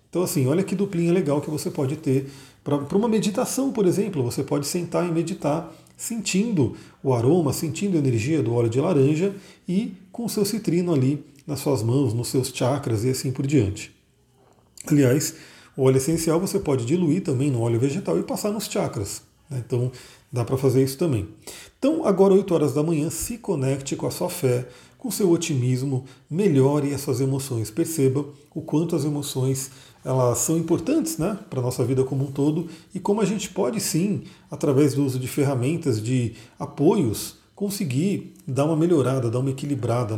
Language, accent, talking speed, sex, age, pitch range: Portuguese, Brazilian, 180 wpm, male, 40-59, 130-180 Hz